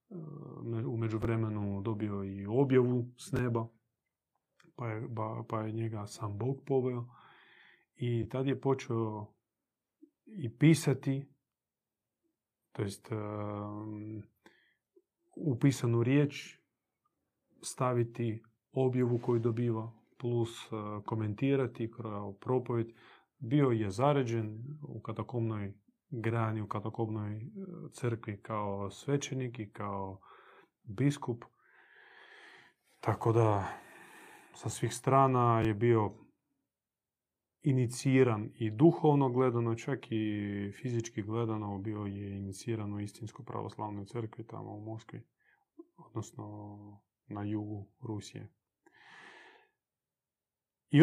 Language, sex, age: Croatian, male, 30-49